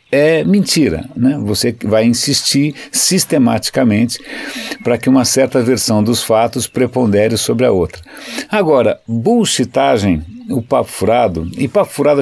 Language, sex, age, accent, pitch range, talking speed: Portuguese, male, 60-79, Brazilian, 110-145 Hz, 130 wpm